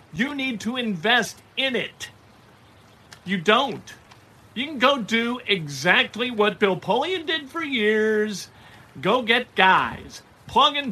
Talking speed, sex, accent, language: 130 wpm, male, American, English